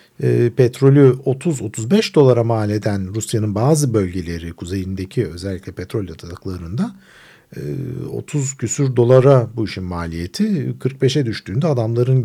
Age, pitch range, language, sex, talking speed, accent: 50-69, 95-145 Hz, Turkish, male, 105 wpm, native